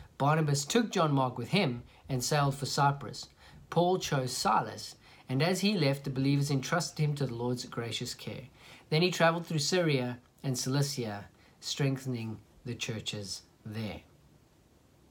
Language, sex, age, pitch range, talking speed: English, male, 40-59, 125-155 Hz, 145 wpm